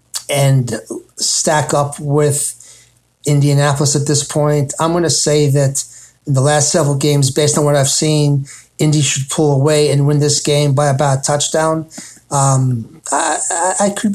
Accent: American